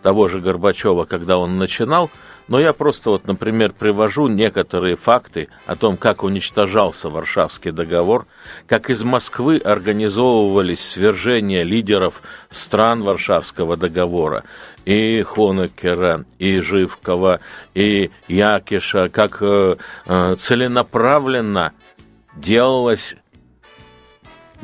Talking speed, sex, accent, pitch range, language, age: 95 wpm, male, native, 90-110 Hz, Russian, 50-69